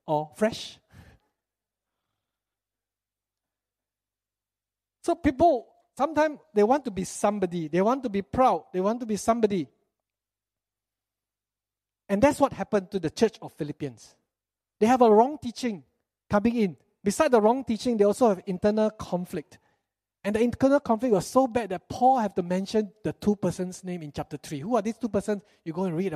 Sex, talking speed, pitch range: male, 165 wpm, 155-225 Hz